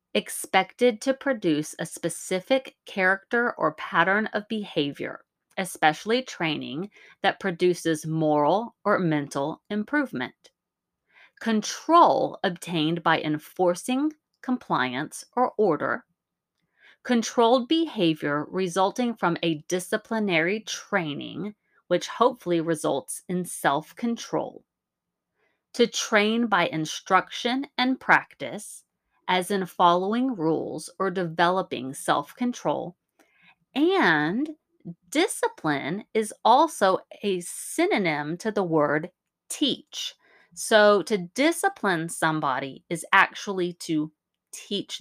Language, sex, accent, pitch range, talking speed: English, female, American, 170-240 Hz, 90 wpm